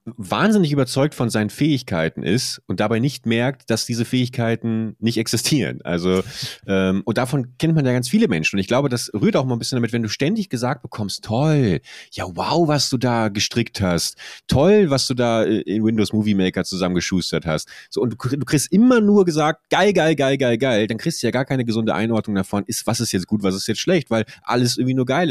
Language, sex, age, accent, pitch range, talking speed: German, male, 30-49, German, 95-130 Hz, 220 wpm